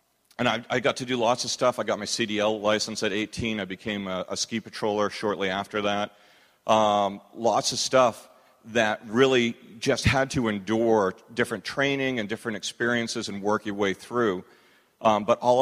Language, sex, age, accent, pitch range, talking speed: English, male, 40-59, American, 100-115 Hz, 185 wpm